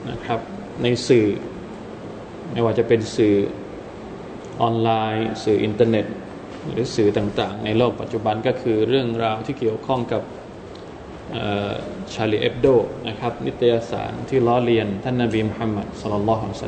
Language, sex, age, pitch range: Thai, male, 20-39, 115-145 Hz